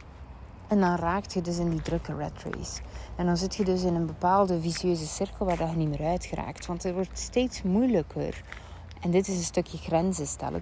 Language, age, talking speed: Dutch, 30-49, 210 wpm